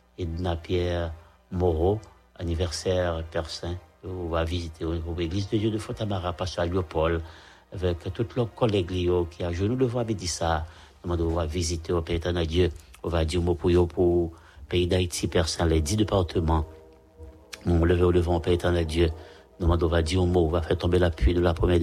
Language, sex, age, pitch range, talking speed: English, male, 60-79, 85-90 Hz, 170 wpm